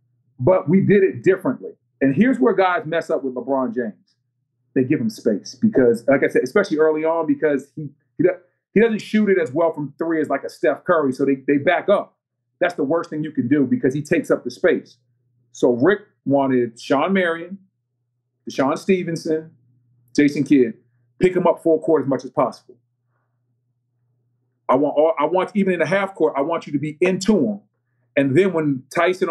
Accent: American